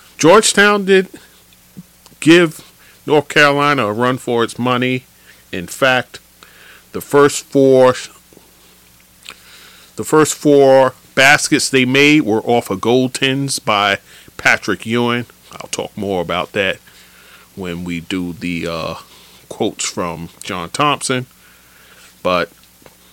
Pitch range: 90-135 Hz